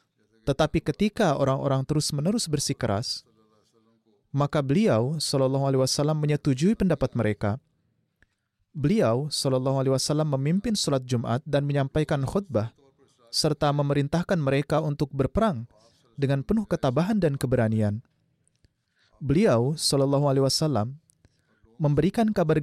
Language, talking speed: Indonesian, 105 wpm